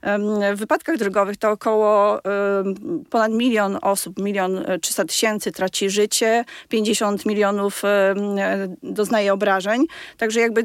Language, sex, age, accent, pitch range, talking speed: Polish, female, 30-49, native, 195-225 Hz, 105 wpm